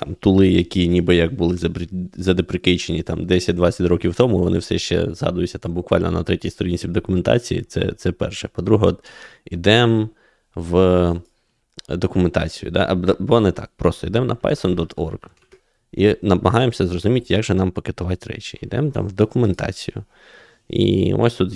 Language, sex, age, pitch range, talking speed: Ukrainian, male, 20-39, 90-110 Hz, 150 wpm